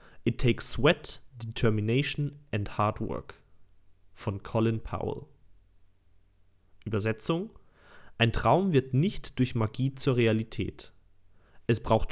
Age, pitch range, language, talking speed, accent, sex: 30-49, 95-130 Hz, German, 105 wpm, German, male